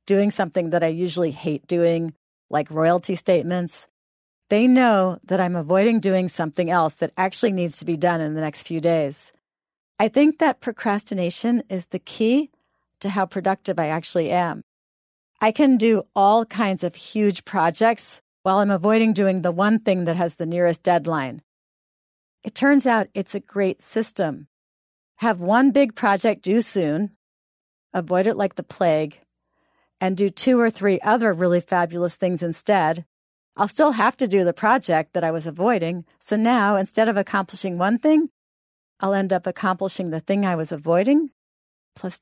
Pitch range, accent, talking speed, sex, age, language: 170-210 Hz, American, 170 wpm, female, 40-59, English